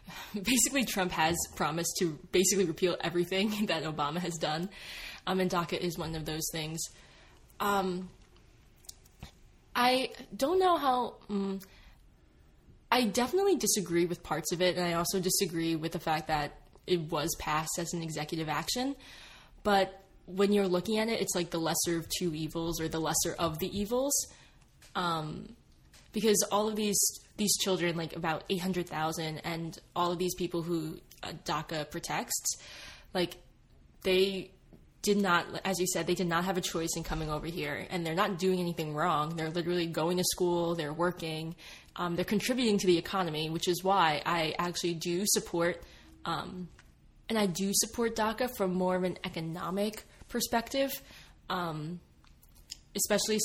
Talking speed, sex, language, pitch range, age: 160 wpm, female, English, 160-195 Hz, 10-29